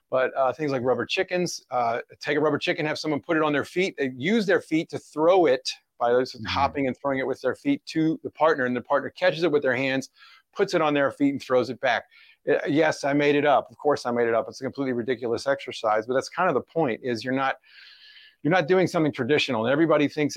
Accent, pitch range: American, 130-160 Hz